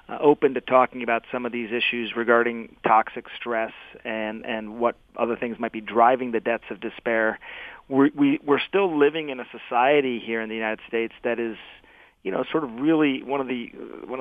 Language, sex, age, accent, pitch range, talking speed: English, male, 40-59, American, 115-135 Hz, 200 wpm